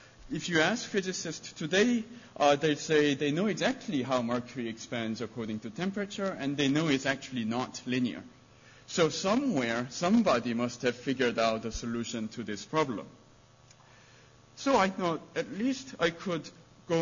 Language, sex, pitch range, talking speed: English, male, 125-170 Hz, 155 wpm